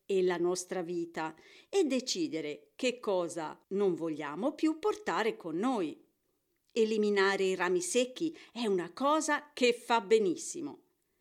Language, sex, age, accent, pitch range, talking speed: Italian, female, 50-69, native, 185-300 Hz, 130 wpm